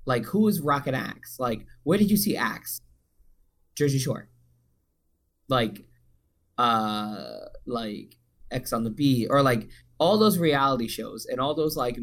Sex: male